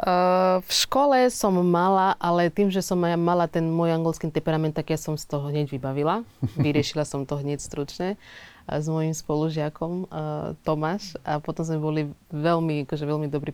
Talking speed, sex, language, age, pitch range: 175 wpm, female, Slovak, 20-39, 150-165 Hz